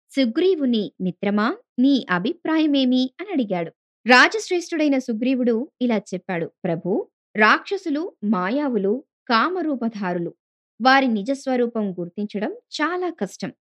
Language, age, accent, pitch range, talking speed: Telugu, 20-39, native, 205-300 Hz, 85 wpm